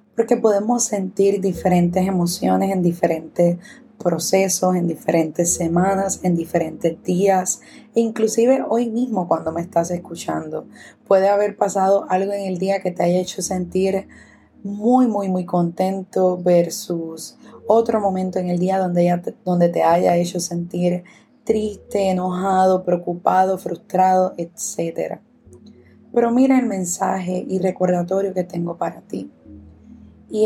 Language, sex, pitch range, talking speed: Spanish, female, 175-210 Hz, 130 wpm